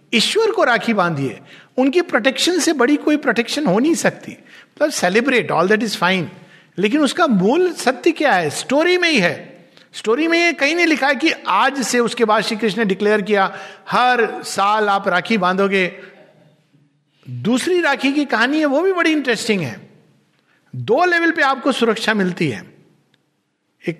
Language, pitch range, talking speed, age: Hindi, 180-275 Hz, 135 wpm, 50-69